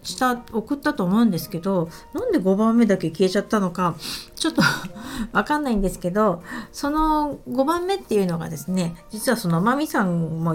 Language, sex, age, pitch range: Japanese, female, 50-69, 175-255 Hz